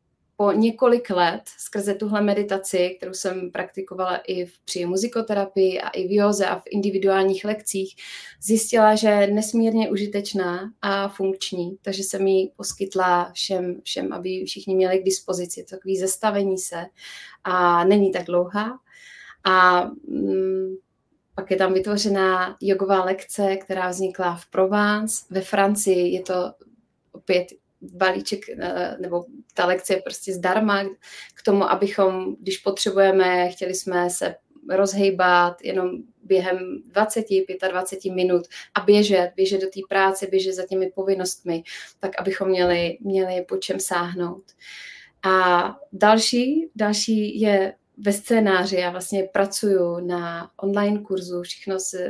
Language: Czech